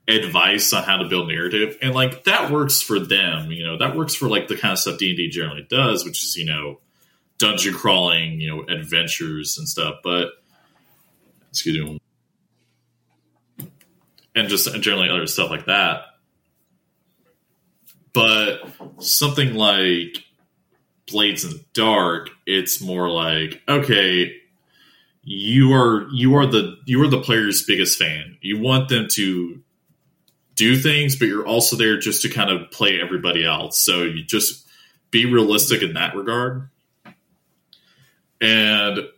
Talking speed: 145 wpm